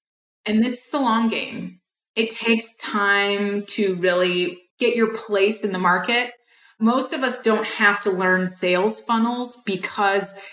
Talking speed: 155 wpm